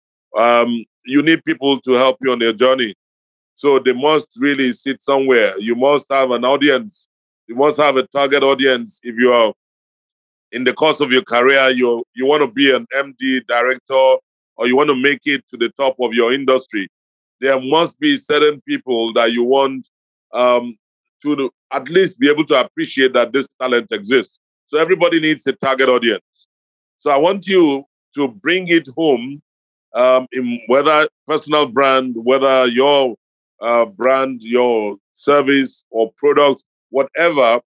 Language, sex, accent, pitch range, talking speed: English, male, Nigerian, 120-145 Hz, 165 wpm